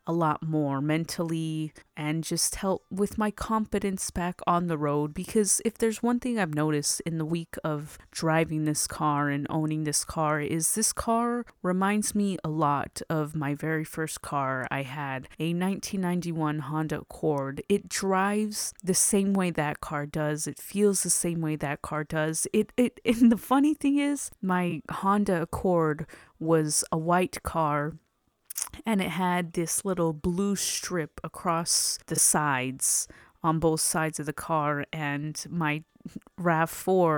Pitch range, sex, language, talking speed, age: 155-195 Hz, female, English, 160 wpm, 20-39